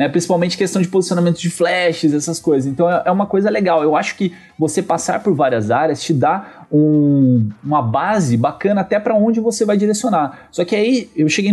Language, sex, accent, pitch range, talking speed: Portuguese, male, Brazilian, 130-180 Hz, 200 wpm